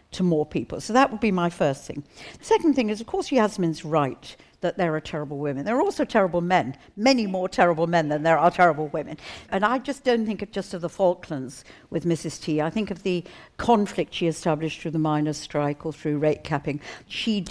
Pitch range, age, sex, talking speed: 155-225 Hz, 60-79, female, 225 wpm